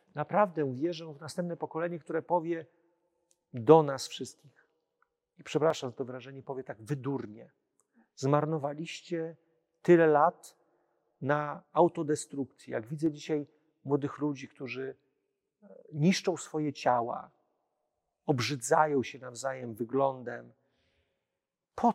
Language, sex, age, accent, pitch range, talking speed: Polish, male, 40-59, native, 130-160 Hz, 100 wpm